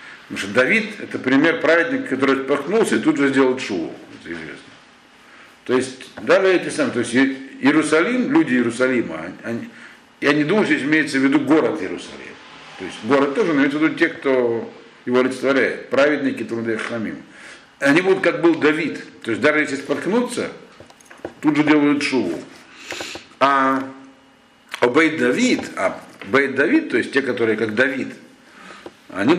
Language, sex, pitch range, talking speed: Russian, male, 120-170 Hz, 155 wpm